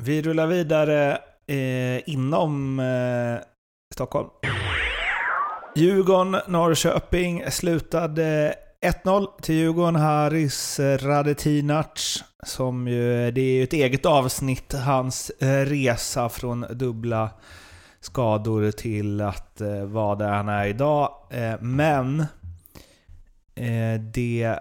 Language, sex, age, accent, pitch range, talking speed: Swedish, male, 30-49, native, 115-145 Hz, 95 wpm